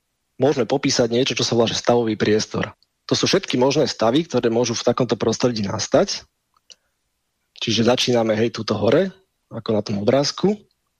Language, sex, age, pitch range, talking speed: Slovak, male, 30-49, 110-135 Hz, 155 wpm